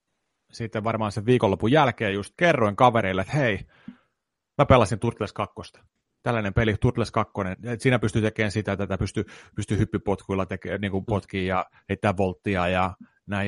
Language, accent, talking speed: Finnish, native, 145 wpm